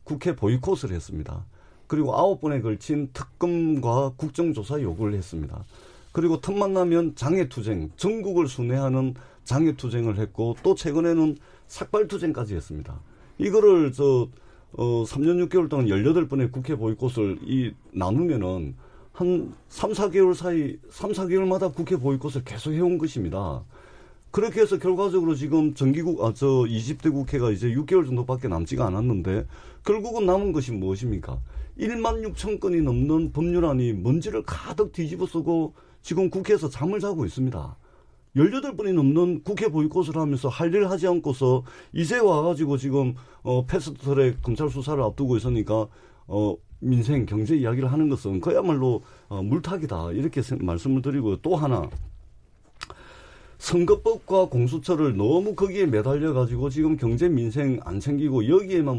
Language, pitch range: Korean, 120-170 Hz